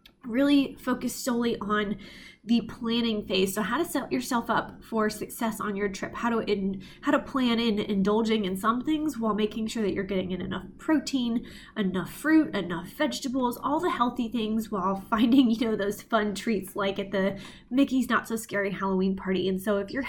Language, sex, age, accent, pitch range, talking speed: English, female, 20-39, American, 200-255 Hz, 190 wpm